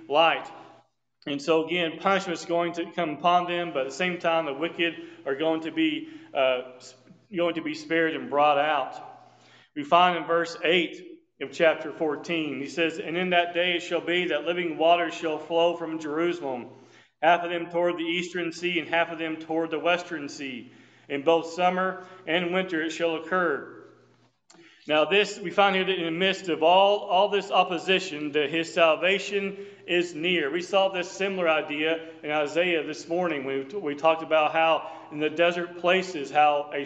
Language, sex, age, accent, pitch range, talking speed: English, male, 40-59, American, 155-180 Hz, 190 wpm